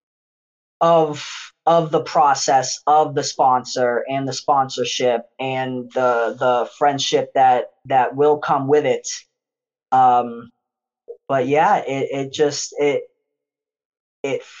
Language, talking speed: English, 115 wpm